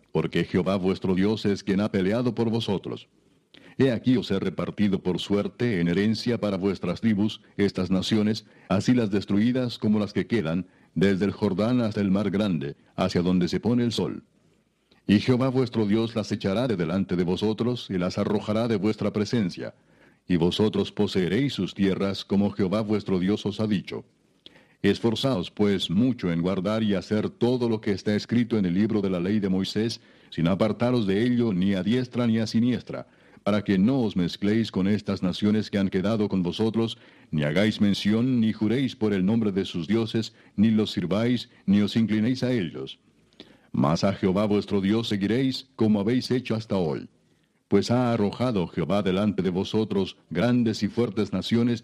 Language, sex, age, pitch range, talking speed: Spanish, male, 60-79, 95-115 Hz, 180 wpm